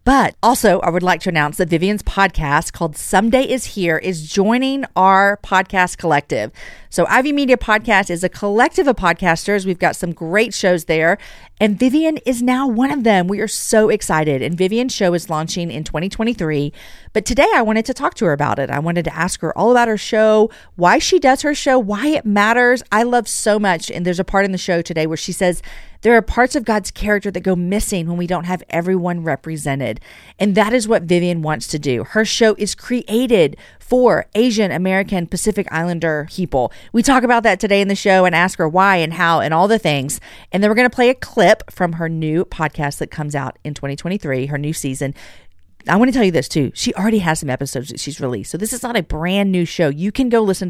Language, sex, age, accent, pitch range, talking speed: English, female, 40-59, American, 160-220 Hz, 225 wpm